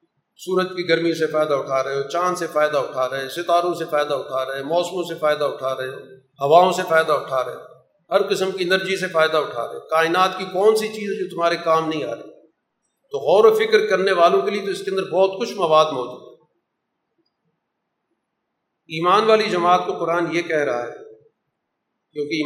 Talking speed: 215 wpm